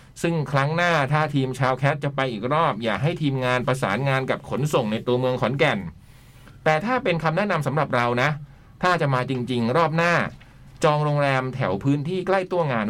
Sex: male